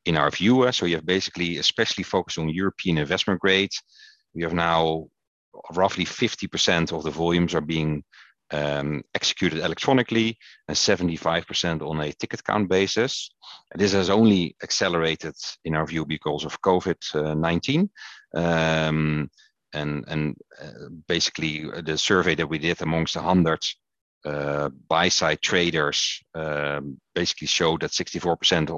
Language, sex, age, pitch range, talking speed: English, male, 40-59, 75-95 Hz, 135 wpm